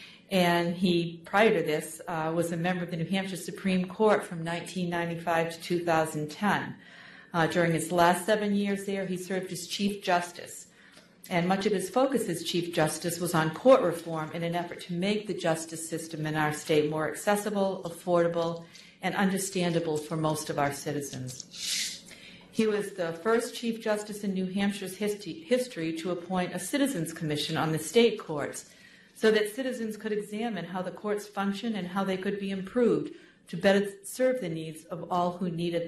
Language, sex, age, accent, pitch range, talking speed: English, female, 50-69, American, 165-205 Hz, 180 wpm